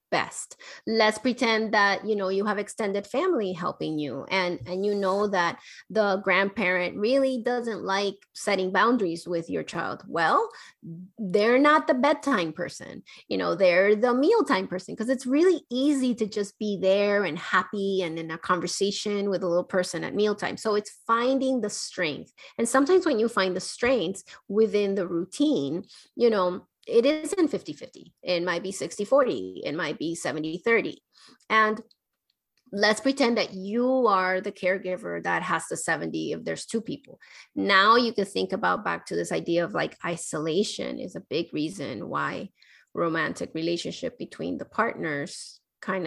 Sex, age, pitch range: female, 30-49, 180-245 Hz